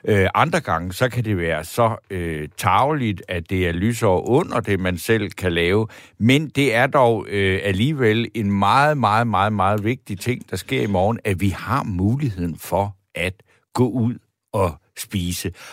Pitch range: 100-130 Hz